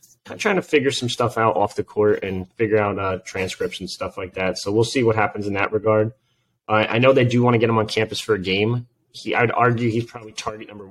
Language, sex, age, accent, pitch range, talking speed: English, male, 30-49, American, 105-130 Hz, 255 wpm